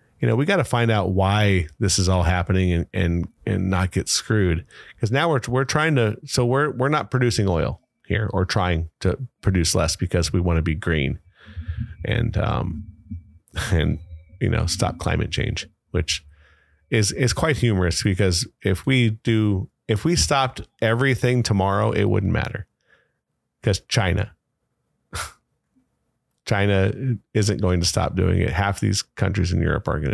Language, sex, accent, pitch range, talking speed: English, male, American, 90-120 Hz, 165 wpm